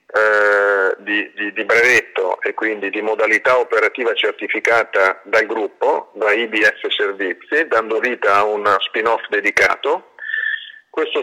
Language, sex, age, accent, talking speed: Italian, male, 40-59, native, 120 wpm